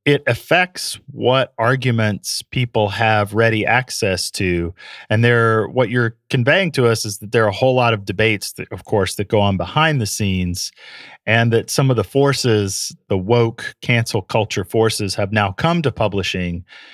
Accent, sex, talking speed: American, male, 175 wpm